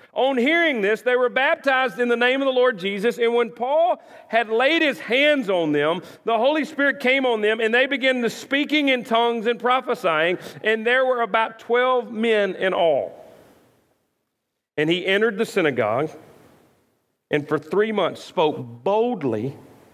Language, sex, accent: English, male, American